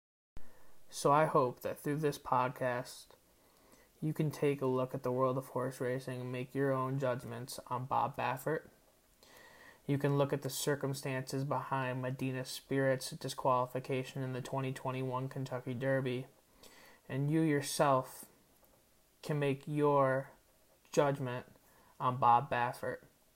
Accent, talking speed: American, 130 wpm